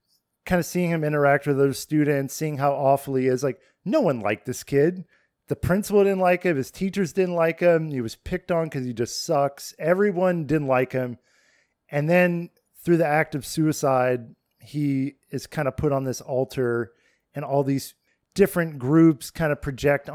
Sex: male